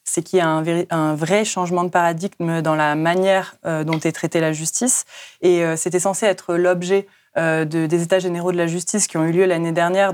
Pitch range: 165-195 Hz